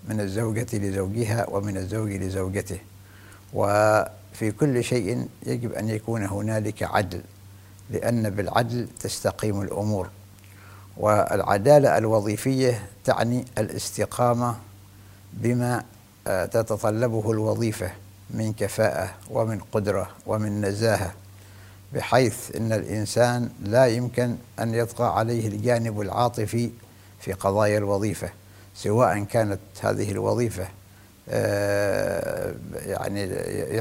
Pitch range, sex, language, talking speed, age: 100-115 Hz, male, English, 85 wpm, 60-79